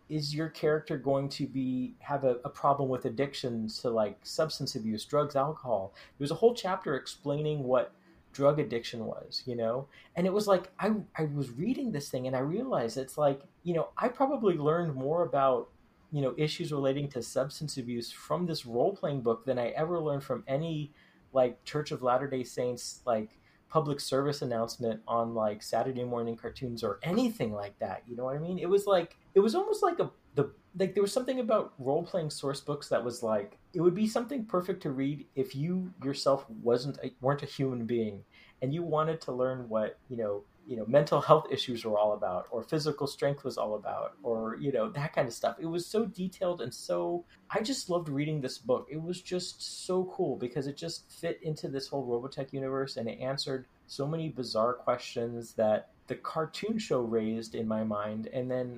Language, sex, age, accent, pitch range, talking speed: English, male, 30-49, American, 120-160 Hz, 205 wpm